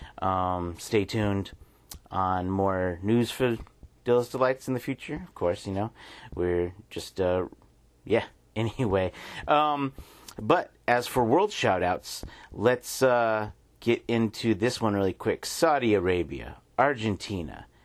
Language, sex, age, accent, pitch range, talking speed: English, male, 40-59, American, 90-125 Hz, 130 wpm